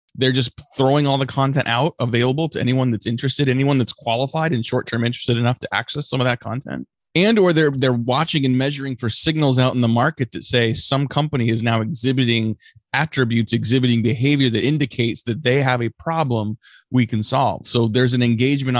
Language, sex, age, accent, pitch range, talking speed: English, male, 30-49, American, 115-140 Hz, 200 wpm